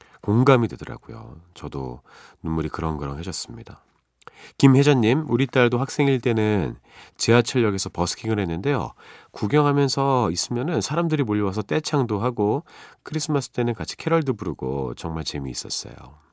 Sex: male